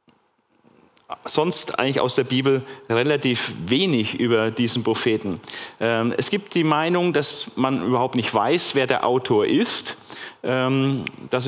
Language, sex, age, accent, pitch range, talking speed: German, male, 40-59, German, 115-135 Hz, 125 wpm